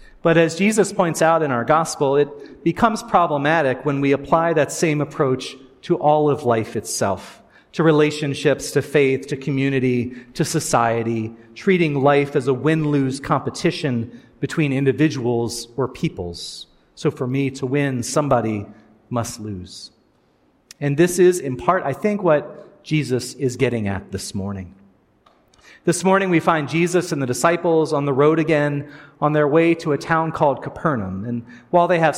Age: 40-59